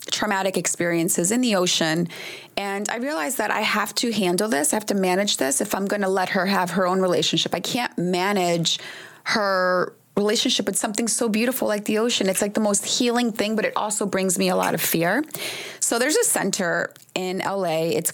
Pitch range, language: 175-215 Hz, English